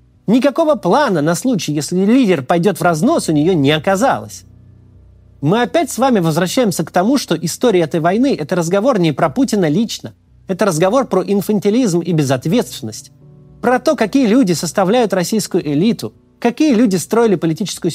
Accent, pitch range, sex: native, 160-250 Hz, male